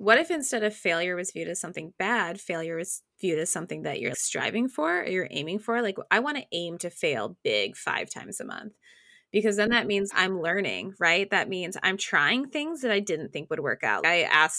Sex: female